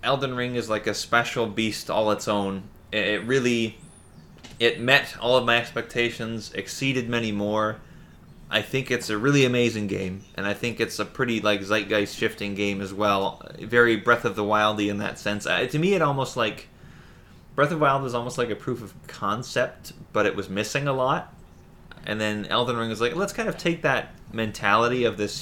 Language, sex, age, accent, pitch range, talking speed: English, male, 20-39, American, 100-120 Hz, 200 wpm